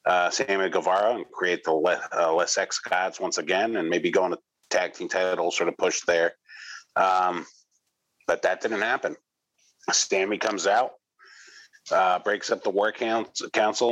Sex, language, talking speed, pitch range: male, English, 170 wpm, 90-130 Hz